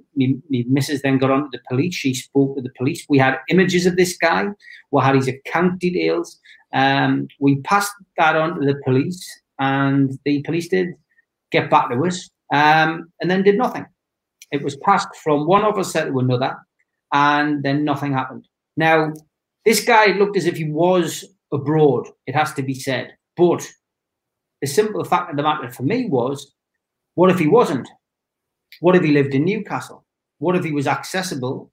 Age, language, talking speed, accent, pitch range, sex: 40-59, English, 180 wpm, British, 135-165 Hz, male